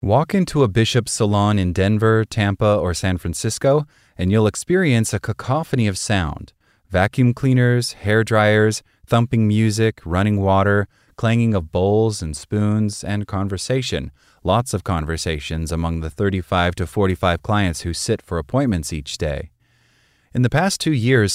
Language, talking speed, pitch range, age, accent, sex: English, 150 wpm, 90-120 Hz, 30-49, American, male